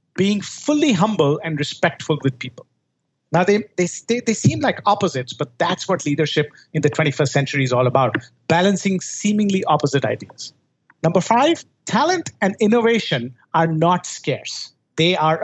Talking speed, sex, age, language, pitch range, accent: 150 wpm, male, 50-69, English, 150-210 Hz, Indian